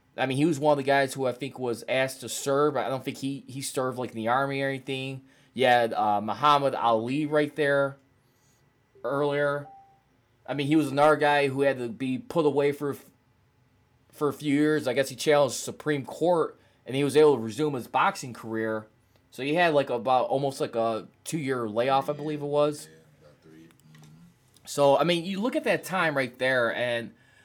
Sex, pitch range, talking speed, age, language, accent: male, 125-160 Hz, 200 wpm, 20-39, English, American